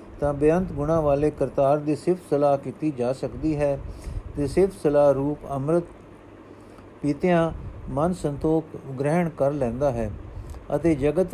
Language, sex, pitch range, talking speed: Punjabi, male, 125-165 Hz, 140 wpm